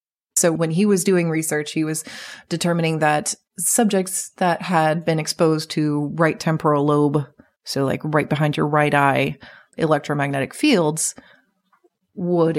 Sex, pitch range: female, 150-190 Hz